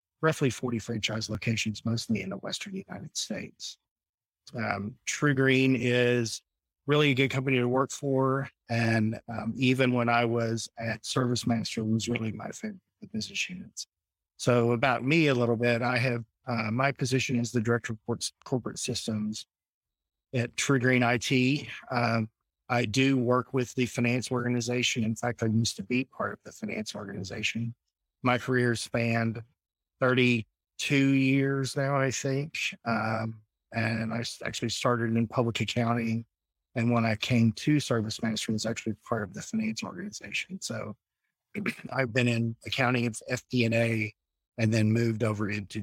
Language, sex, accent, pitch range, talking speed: English, male, American, 110-130 Hz, 155 wpm